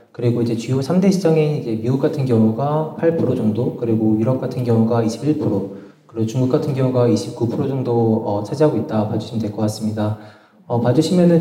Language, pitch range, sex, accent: Korean, 110-150 Hz, male, native